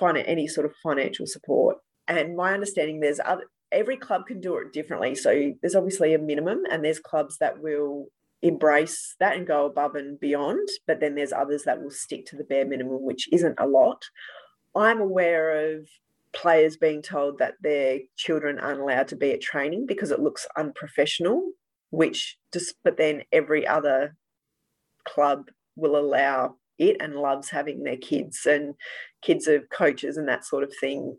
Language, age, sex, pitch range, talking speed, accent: English, 30-49, female, 145-185 Hz, 175 wpm, Australian